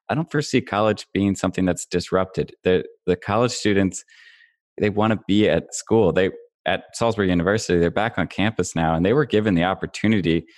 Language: English